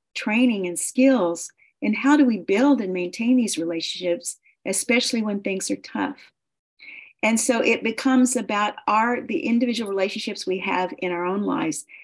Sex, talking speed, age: female, 160 wpm, 50-69